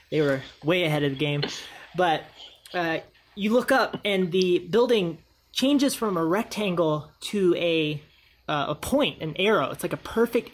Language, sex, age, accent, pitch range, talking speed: English, male, 20-39, American, 150-195 Hz, 170 wpm